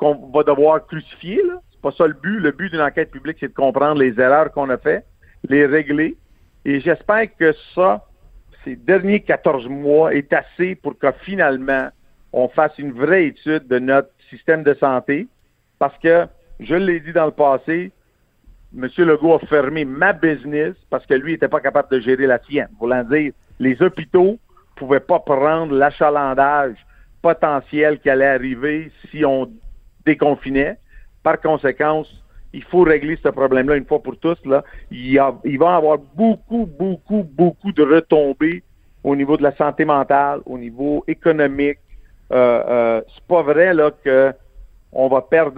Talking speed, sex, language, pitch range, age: 170 wpm, male, French, 135-165 Hz, 50-69